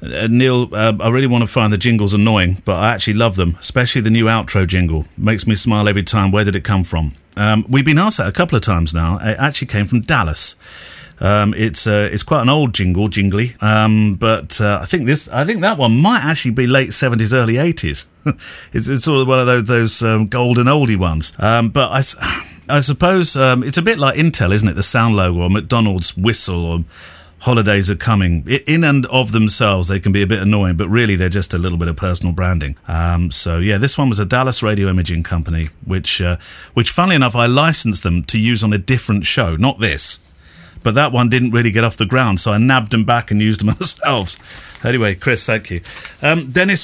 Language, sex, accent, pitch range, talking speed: English, male, British, 95-130 Hz, 230 wpm